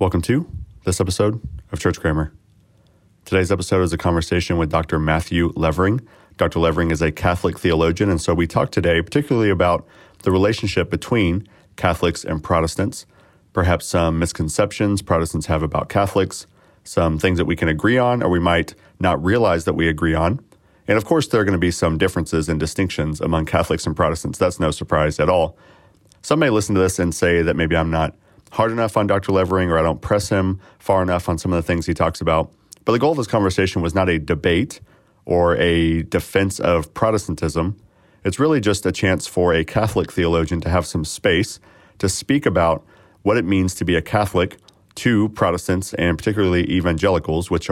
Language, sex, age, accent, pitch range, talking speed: English, male, 40-59, American, 85-100 Hz, 195 wpm